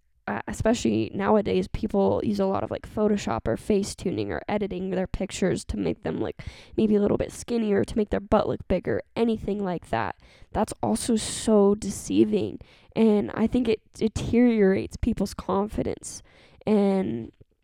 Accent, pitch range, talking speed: American, 200-240 Hz, 160 wpm